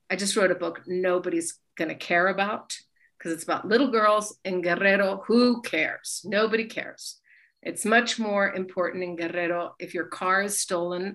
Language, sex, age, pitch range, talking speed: English, female, 50-69, 180-220 Hz, 170 wpm